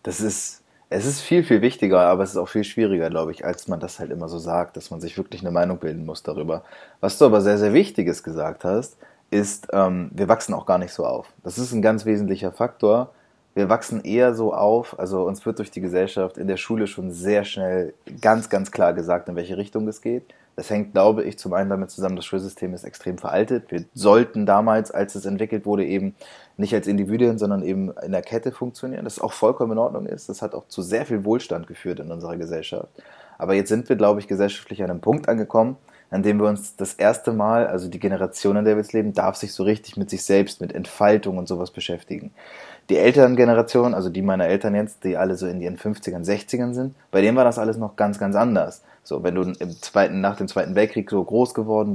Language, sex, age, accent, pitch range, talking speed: German, male, 20-39, German, 95-110 Hz, 230 wpm